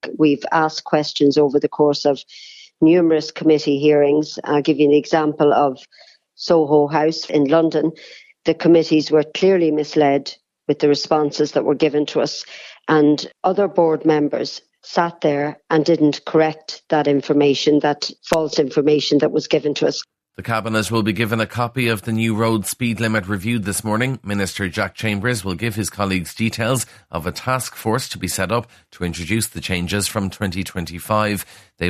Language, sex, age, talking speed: English, male, 50-69, 170 wpm